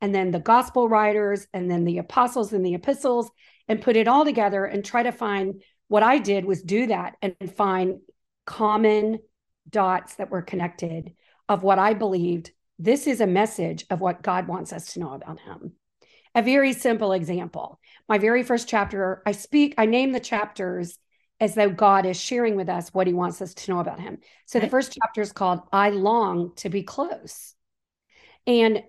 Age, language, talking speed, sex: 40-59, English, 190 wpm, female